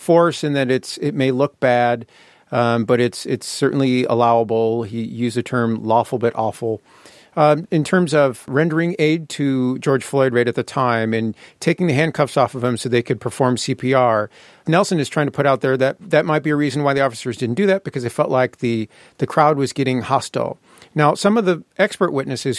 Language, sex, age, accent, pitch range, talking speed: English, male, 40-59, American, 125-155 Hz, 215 wpm